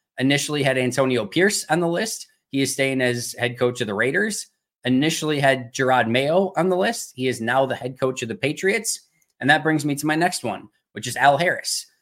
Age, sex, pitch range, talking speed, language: 20-39, male, 125-145 Hz, 220 wpm, English